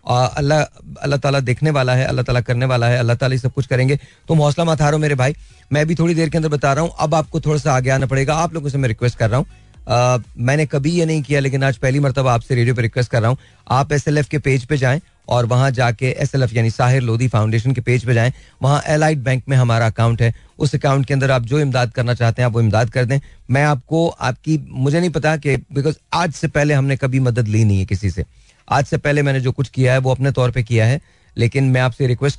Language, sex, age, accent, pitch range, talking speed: Hindi, male, 40-59, native, 115-140 Hz, 255 wpm